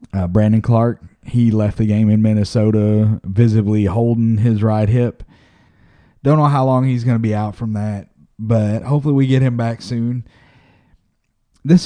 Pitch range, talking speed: 100-130 Hz, 160 wpm